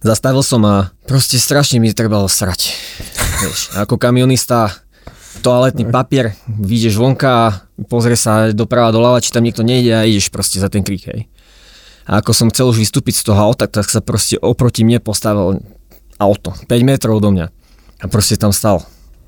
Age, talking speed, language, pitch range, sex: 20-39, 170 wpm, Slovak, 100-120 Hz, male